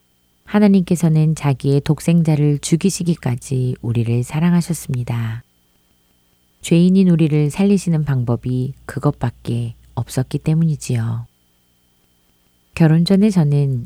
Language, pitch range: Korean, 120-165 Hz